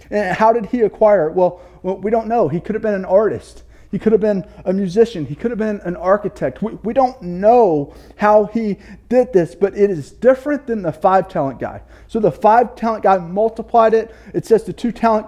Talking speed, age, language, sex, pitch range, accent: 210 wpm, 30-49, English, male, 170-220 Hz, American